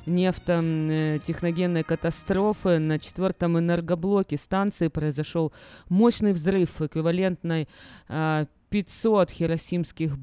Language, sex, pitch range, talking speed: Russian, female, 145-175 Hz, 70 wpm